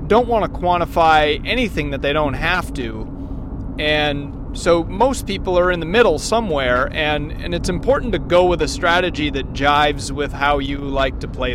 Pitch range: 140-180 Hz